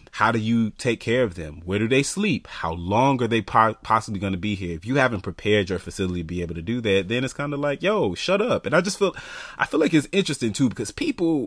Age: 30-49